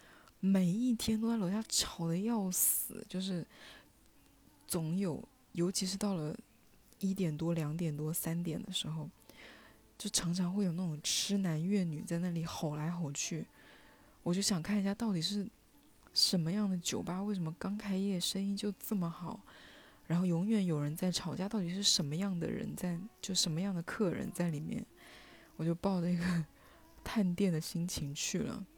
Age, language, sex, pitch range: 20-39, Chinese, female, 170-205 Hz